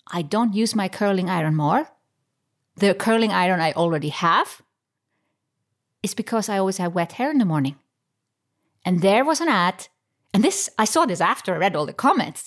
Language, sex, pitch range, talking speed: English, female, 160-225 Hz, 190 wpm